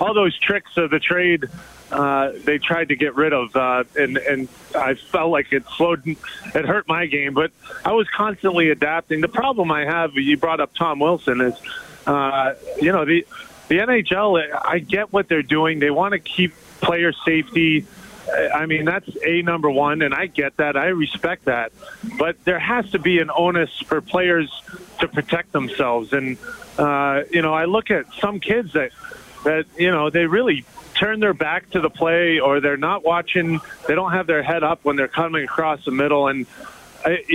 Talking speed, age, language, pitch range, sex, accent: 195 wpm, 30-49, English, 150-185 Hz, male, American